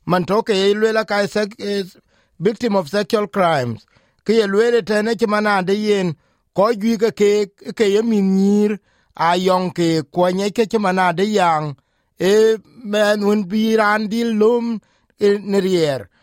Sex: male